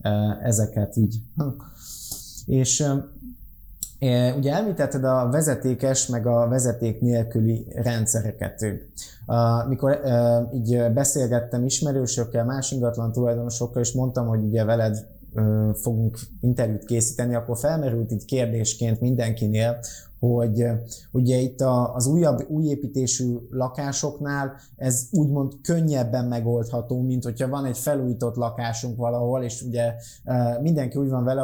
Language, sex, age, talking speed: Hungarian, male, 20-39, 105 wpm